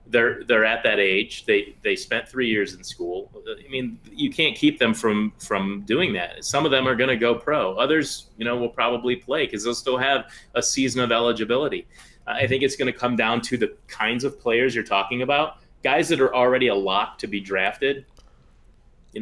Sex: male